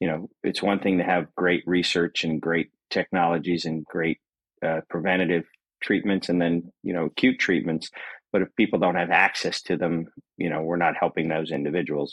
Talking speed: 190 wpm